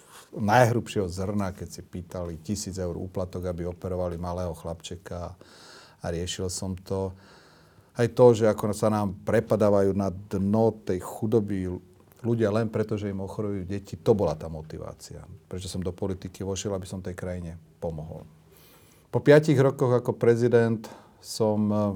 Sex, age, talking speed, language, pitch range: male, 40-59, 150 wpm, Slovak, 95-115 Hz